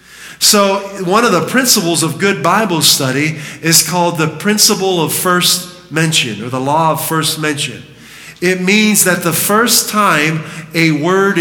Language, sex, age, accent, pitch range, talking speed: English, male, 40-59, American, 145-180 Hz, 160 wpm